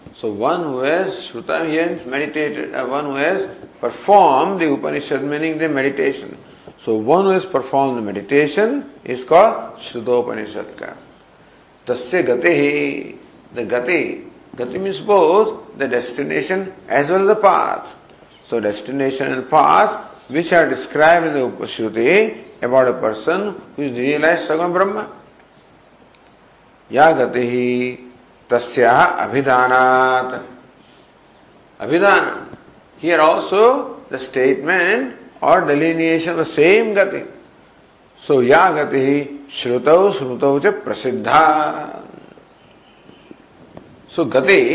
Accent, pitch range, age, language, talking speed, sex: Indian, 125-170 Hz, 50-69, English, 105 wpm, male